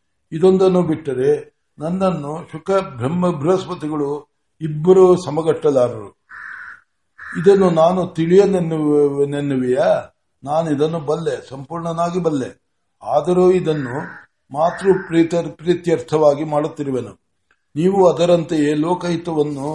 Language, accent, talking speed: Kannada, native, 75 wpm